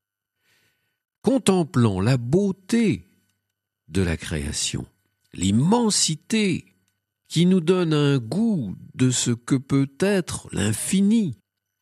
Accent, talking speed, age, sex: French, 90 wpm, 50-69, male